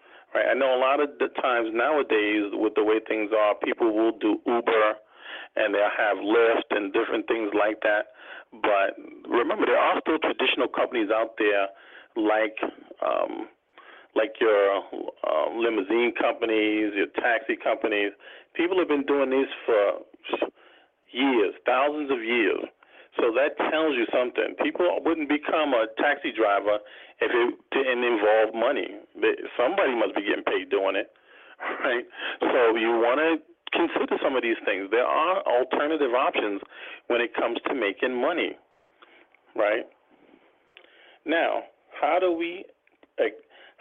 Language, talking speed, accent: English, 140 wpm, American